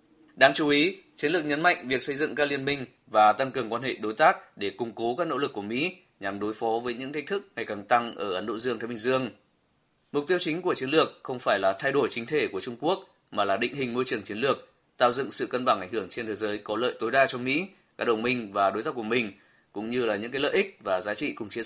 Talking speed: 290 wpm